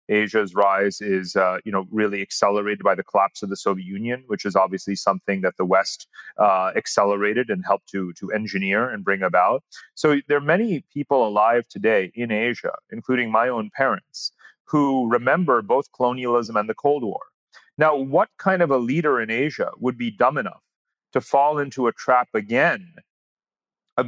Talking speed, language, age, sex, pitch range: 180 wpm, English, 30-49, male, 95-135 Hz